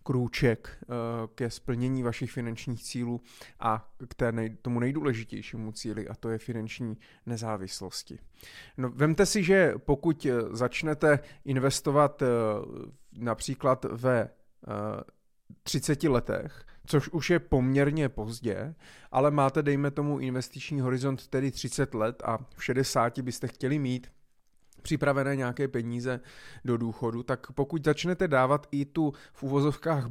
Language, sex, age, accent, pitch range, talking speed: Czech, male, 30-49, native, 120-140 Hz, 120 wpm